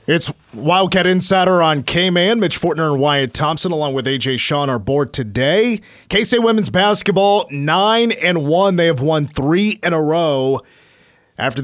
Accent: American